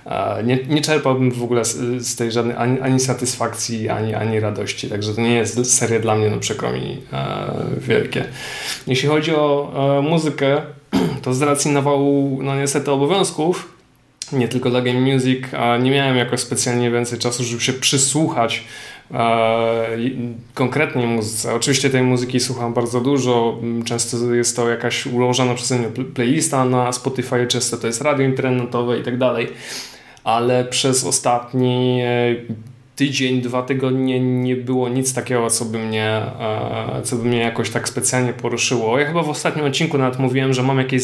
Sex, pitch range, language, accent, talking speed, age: male, 120-135 Hz, Polish, native, 155 wpm, 20-39